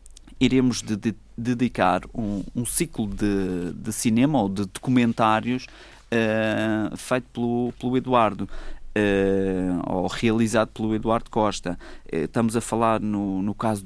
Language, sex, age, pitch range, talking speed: Portuguese, male, 20-39, 95-115 Hz, 125 wpm